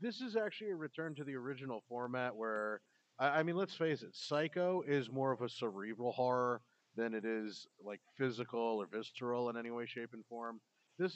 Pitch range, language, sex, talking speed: 125-170 Hz, English, male, 195 wpm